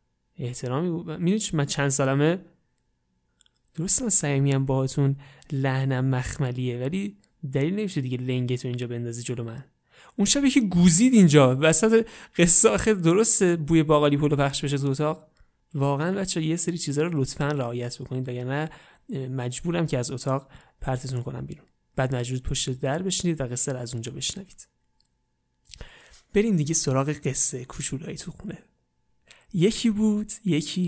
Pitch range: 130-170 Hz